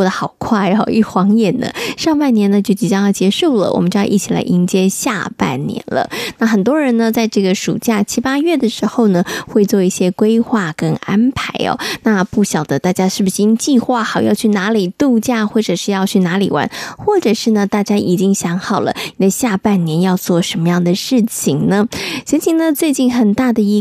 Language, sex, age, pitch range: Chinese, female, 20-39, 195-245 Hz